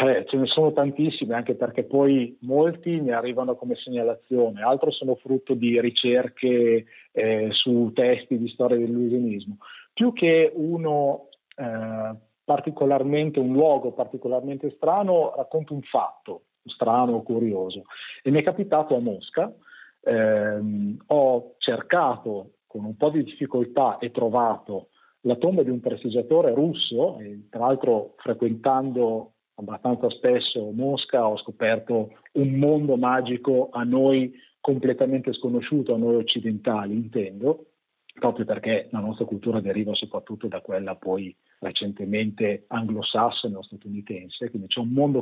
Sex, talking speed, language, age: male, 130 wpm, Italian, 40-59